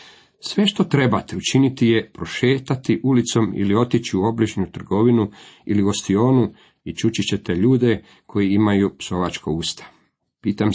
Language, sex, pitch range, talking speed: Croatian, male, 95-120 Hz, 130 wpm